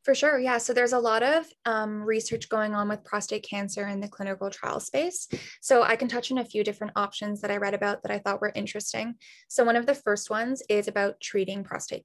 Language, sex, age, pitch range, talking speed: English, female, 10-29, 200-245 Hz, 240 wpm